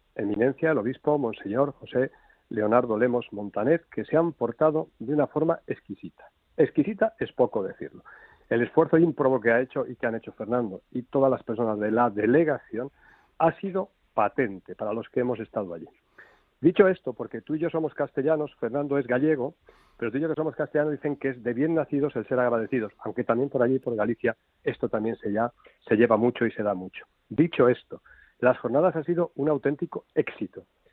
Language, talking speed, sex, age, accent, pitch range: Spanish, 195 wpm, male, 50-69, Spanish, 120-160 Hz